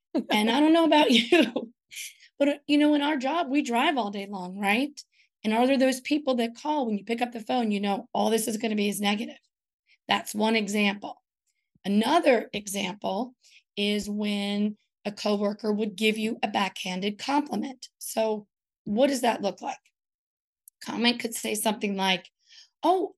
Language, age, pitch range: English, 30-49, 205-265 Hz